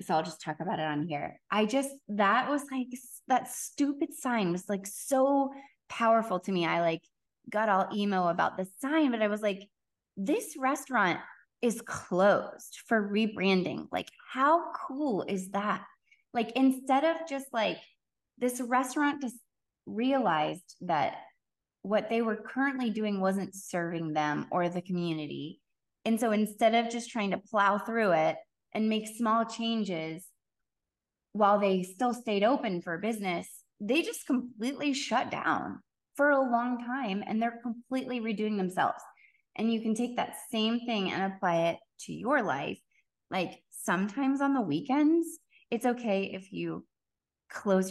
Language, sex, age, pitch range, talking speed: English, female, 20-39, 185-250 Hz, 155 wpm